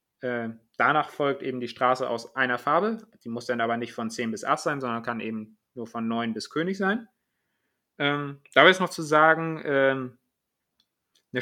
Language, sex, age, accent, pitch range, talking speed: German, male, 30-49, German, 120-145 Hz, 190 wpm